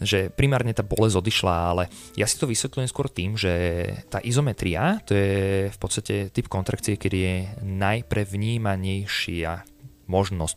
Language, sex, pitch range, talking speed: Slovak, male, 90-115 Hz, 140 wpm